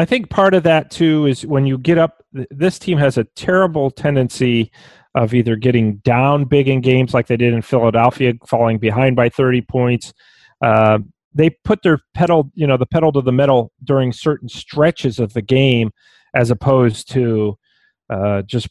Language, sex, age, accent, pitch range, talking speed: English, male, 40-59, American, 120-155 Hz, 185 wpm